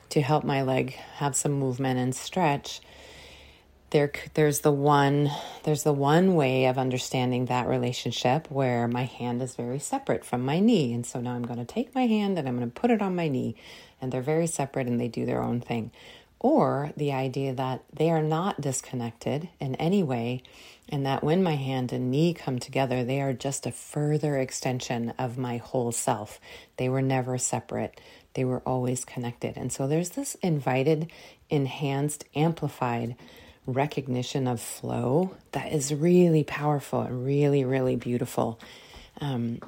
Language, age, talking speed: English, 30-49, 175 wpm